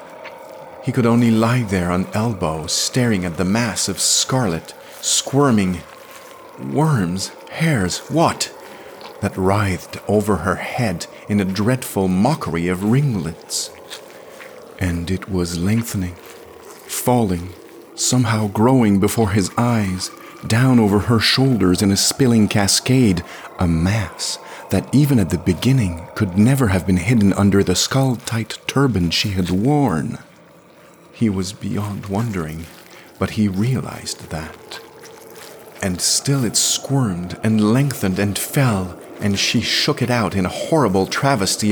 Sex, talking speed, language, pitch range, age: male, 130 wpm, English, 95-130 Hz, 40-59